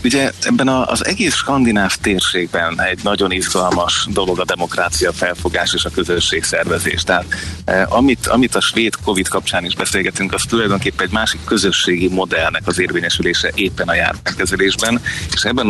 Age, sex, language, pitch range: 30-49, male, Hungarian, 90-100 Hz